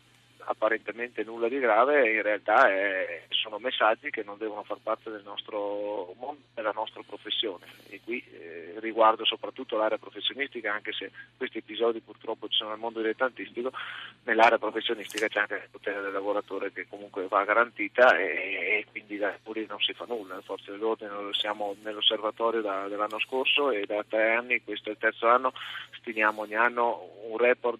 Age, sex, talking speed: 30-49, male, 170 wpm